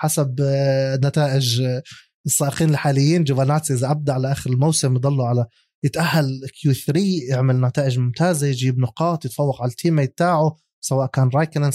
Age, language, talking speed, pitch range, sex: 20-39, Arabic, 135 wpm, 135-170 Hz, male